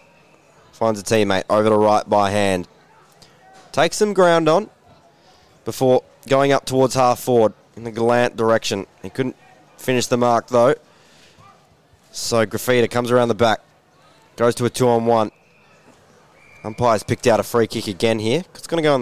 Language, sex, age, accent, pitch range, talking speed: English, male, 20-39, Australian, 110-135 Hz, 160 wpm